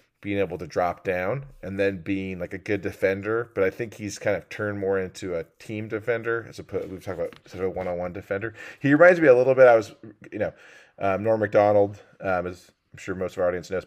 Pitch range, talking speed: 85-105 Hz, 240 wpm